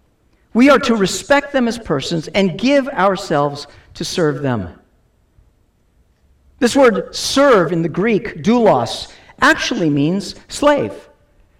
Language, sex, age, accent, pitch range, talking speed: English, male, 50-69, American, 190-270 Hz, 120 wpm